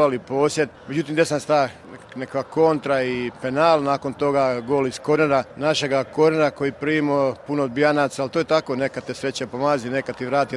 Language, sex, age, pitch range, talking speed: Croatian, male, 50-69, 140-165 Hz, 175 wpm